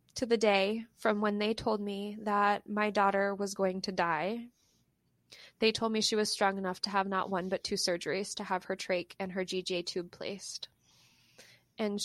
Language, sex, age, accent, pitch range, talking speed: English, female, 20-39, American, 185-205 Hz, 195 wpm